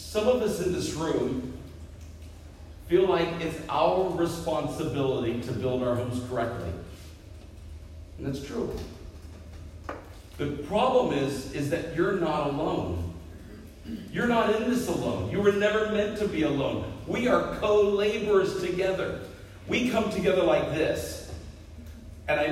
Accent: American